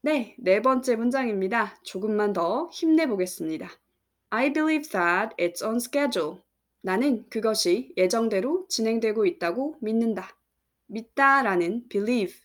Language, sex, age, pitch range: Korean, female, 20-39, 185-250 Hz